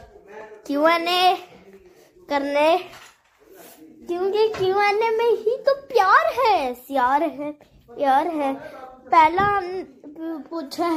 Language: Hindi